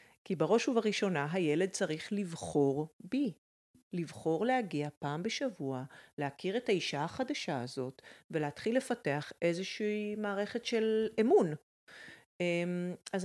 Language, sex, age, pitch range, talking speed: Hebrew, female, 40-59, 160-225 Hz, 105 wpm